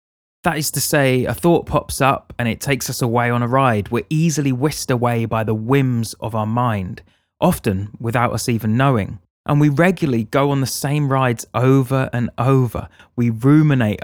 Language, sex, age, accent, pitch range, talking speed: English, male, 20-39, British, 110-140 Hz, 190 wpm